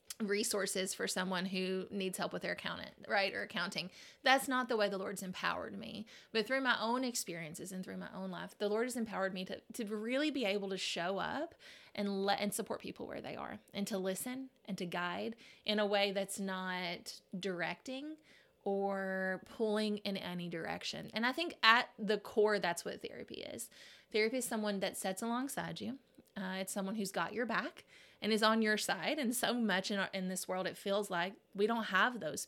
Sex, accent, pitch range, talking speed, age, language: female, American, 190-230 Hz, 205 wpm, 20-39, English